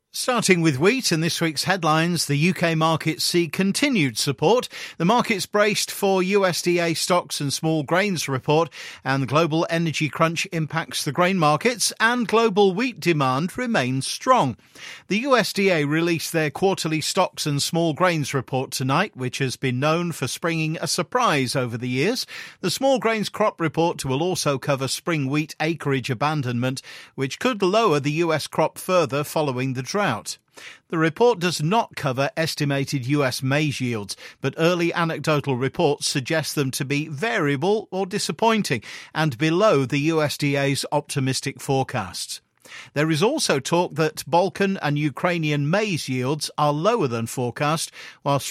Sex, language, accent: male, English, British